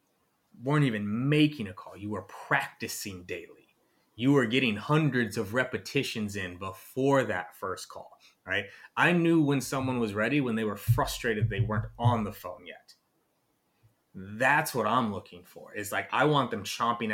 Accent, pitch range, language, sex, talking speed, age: American, 105-130 Hz, English, male, 170 wpm, 30-49